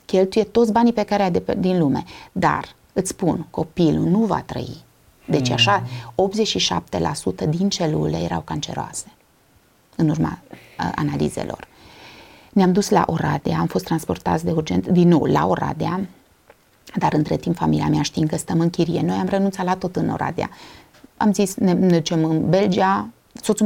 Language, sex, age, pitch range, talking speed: Romanian, female, 30-49, 165-205 Hz, 165 wpm